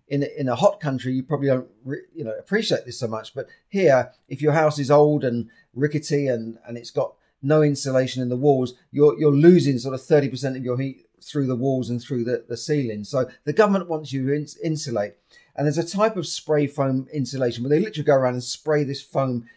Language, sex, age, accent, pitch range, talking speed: English, male, 40-59, British, 125-155 Hz, 225 wpm